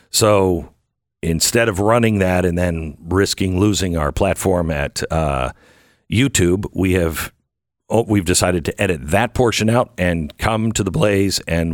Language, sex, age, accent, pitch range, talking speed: English, male, 50-69, American, 90-120 Hz, 155 wpm